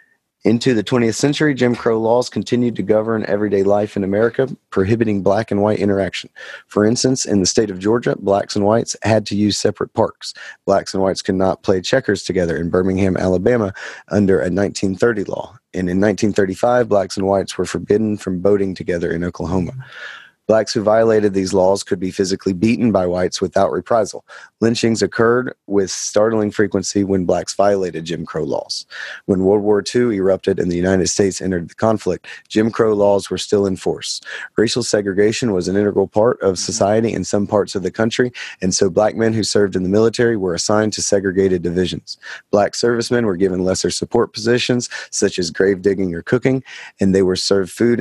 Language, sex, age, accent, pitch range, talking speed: English, male, 30-49, American, 95-110 Hz, 190 wpm